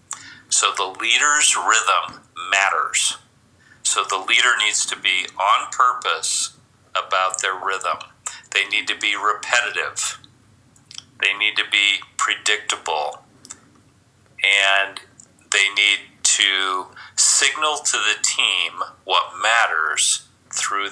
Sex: male